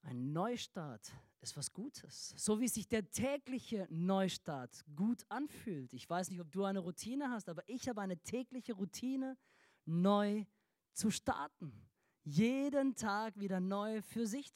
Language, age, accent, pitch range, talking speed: German, 20-39, German, 185-255 Hz, 150 wpm